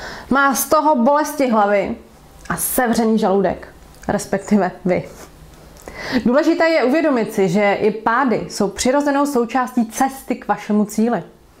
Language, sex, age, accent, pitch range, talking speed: Czech, female, 30-49, native, 210-280 Hz, 125 wpm